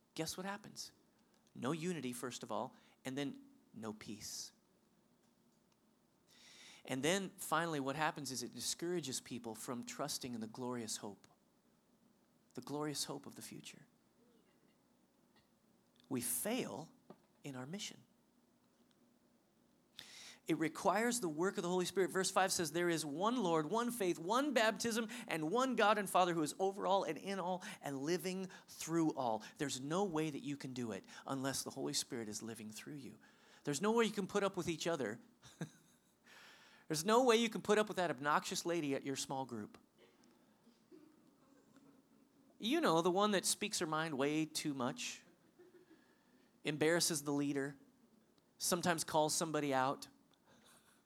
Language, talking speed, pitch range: English, 155 wpm, 140-205 Hz